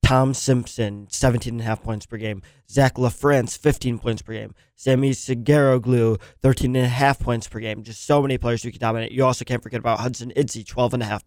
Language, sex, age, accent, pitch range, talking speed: English, male, 20-39, American, 110-130 Hz, 175 wpm